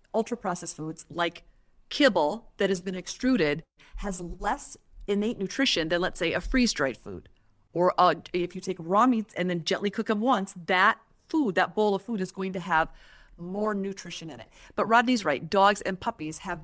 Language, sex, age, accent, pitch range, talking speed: English, female, 40-59, American, 165-210 Hz, 190 wpm